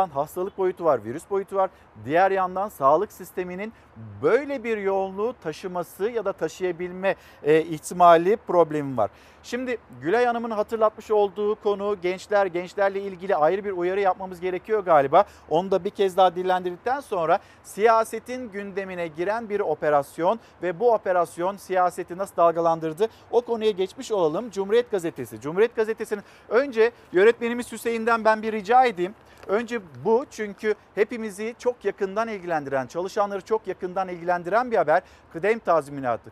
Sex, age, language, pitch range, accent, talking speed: male, 50-69, Turkish, 180-230 Hz, native, 135 wpm